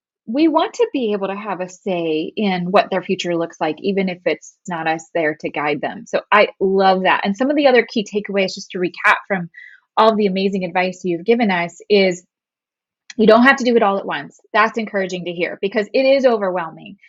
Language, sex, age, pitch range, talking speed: English, female, 20-39, 190-235 Hz, 225 wpm